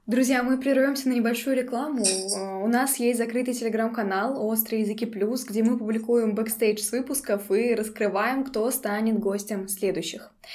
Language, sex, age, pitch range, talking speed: Russian, female, 10-29, 215-265 Hz, 150 wpm